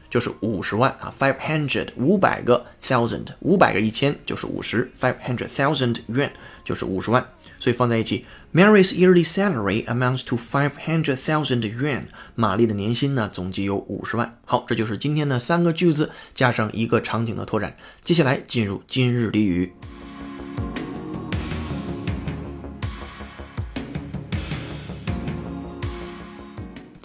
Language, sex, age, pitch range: Chinese, male, 30-49, 105-150 Hz